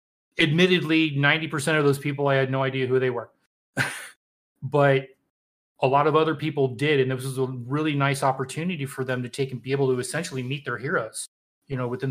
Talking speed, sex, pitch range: 210 wpm, male, 130-150 Hz